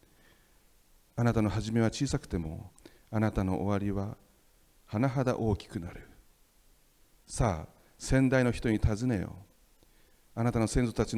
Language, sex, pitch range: Japanese, male, 95-115 Hz